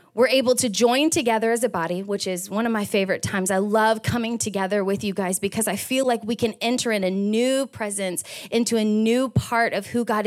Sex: female